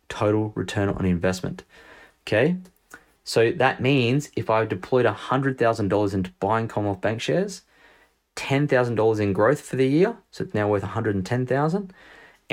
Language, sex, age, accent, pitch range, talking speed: English, male, 20-39, Australian, 100-135 Hz, 135 wpm